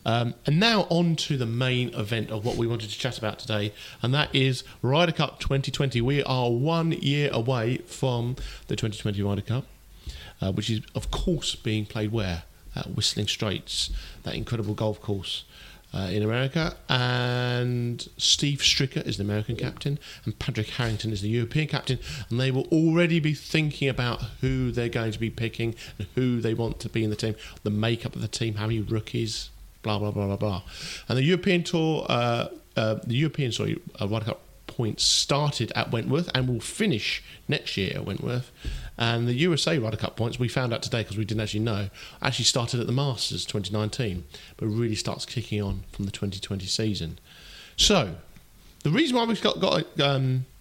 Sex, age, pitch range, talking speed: male, 40-59, 110-135 Hz, 190 wpm